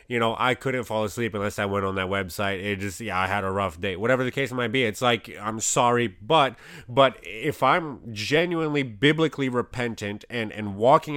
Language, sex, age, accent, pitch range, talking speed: English, male, 30-49, American, 110-135 Hz, 210 wpm